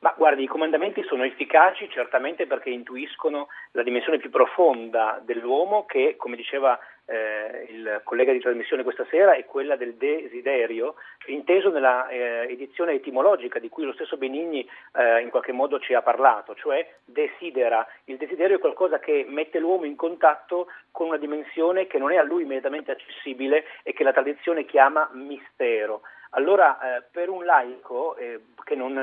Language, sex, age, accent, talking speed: Italian, male, 40-59, native, 165 wpm